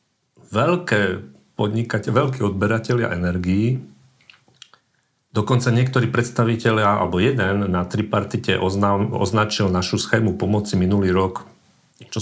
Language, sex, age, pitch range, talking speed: Slovak, male, 40-59, 90-115 Hz, 90 wpm